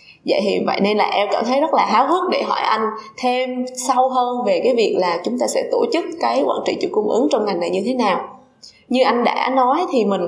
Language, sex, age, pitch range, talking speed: Vietnamese, female, 20-39, 200-285 Hz, 265 wpm